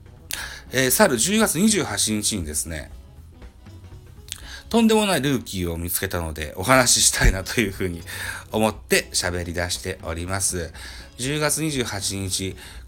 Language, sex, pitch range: Japanese, male, 85-120 Hz